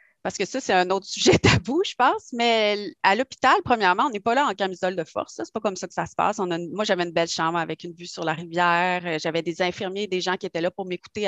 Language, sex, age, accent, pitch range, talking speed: French, female, 30-49, Canadian, 175-215 Hz, 295 wpm